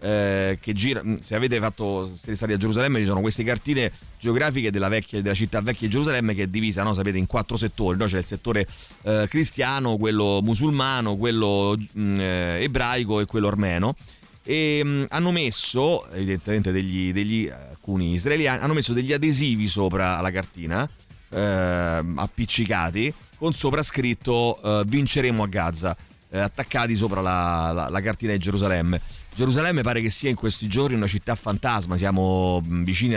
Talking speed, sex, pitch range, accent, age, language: 165 wpm, male, 100-125 Hz, native, 30-49, Italian